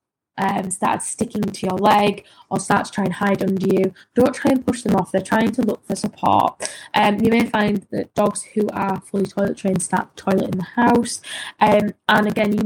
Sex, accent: female, British